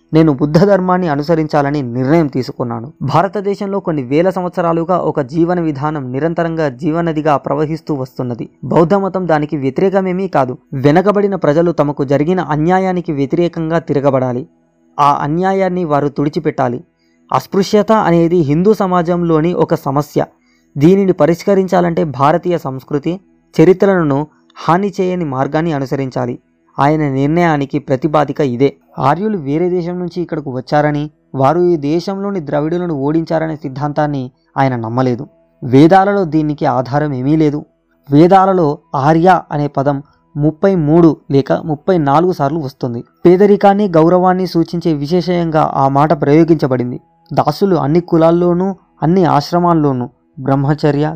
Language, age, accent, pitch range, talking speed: Telugu, 20-39, native, 140-175 Hz, 110 wpm